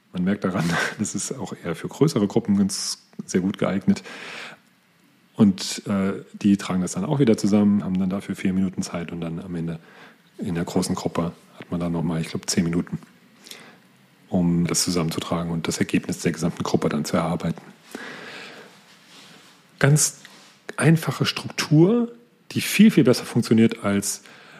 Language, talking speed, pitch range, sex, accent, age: German, 165 wpm, 95-125 Hz, male, German, 40-59